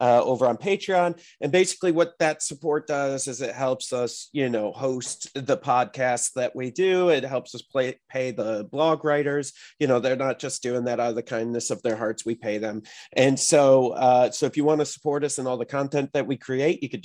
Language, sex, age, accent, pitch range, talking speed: English, male, 30-49, American, 125-155 Hz, 230 wpm